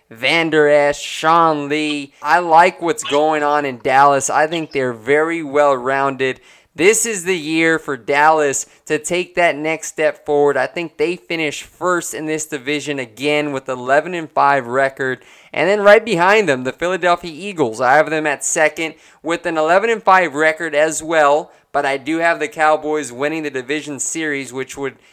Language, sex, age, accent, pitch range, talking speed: English, male, 20-39, American, 145-170 Hz, 170 wpm